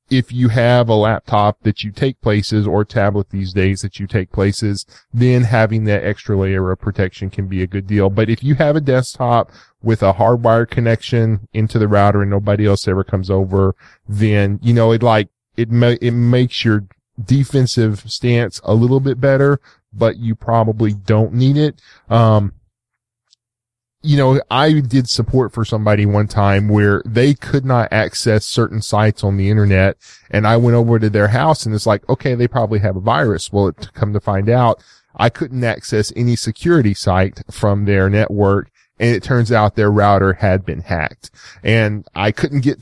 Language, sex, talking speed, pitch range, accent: English, male, 185 wpm, 100-120 Hz, American